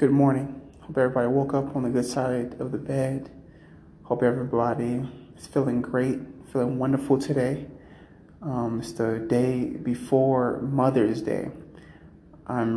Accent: American